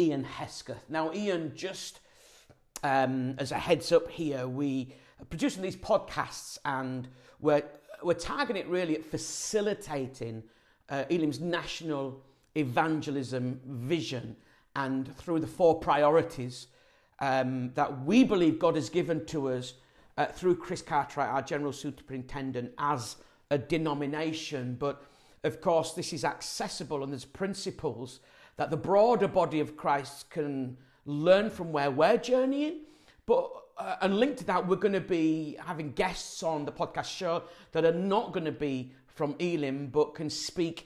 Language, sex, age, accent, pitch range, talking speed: English, male, 50-69, British, 140-180 Hz, 150 wpm